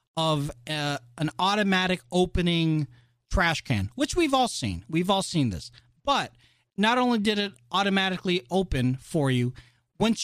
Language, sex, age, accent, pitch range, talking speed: English, male, 40-59, American, 125-180 Hz, 145 wpm